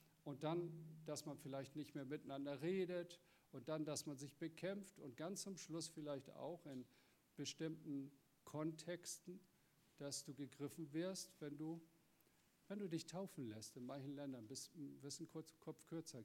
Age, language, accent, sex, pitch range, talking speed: 50-69, German, German, male, 135-165 Hz, 155 wpm